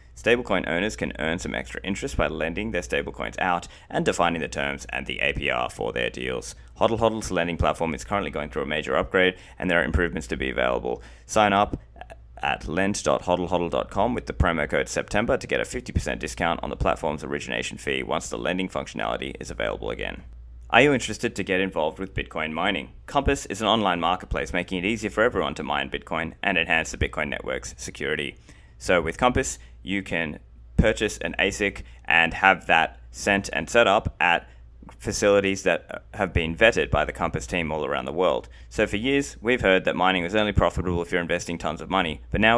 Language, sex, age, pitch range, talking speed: English, male, 20-39, 75-105 Hz, 195 wpm